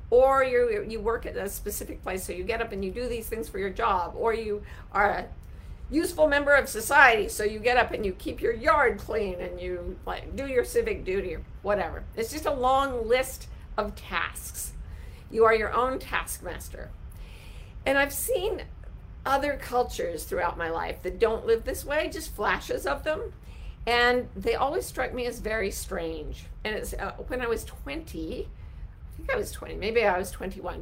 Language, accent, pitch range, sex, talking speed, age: English, American, 180-255 Hz, female, 195 wpm, 50-69